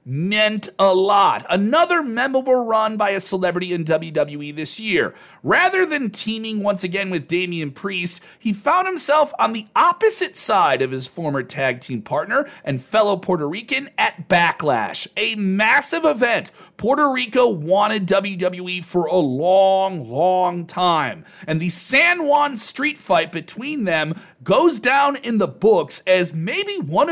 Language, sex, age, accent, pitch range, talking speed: English, male, 40-59, American, 175-260 Hz, 150 wpm